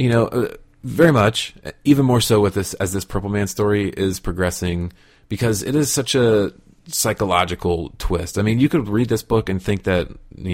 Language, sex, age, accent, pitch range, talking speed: English, male, 30-49, American, 90-105 Hz, 200 wpm